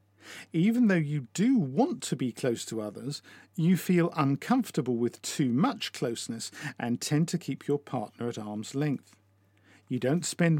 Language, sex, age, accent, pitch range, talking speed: English, male, 50-69, British, 115-170 Hz, 165 wpm